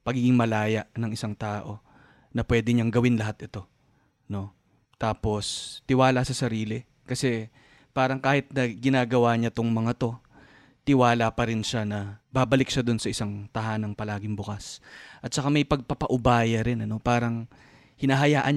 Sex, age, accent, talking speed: male, 20-39, native, 145 wpm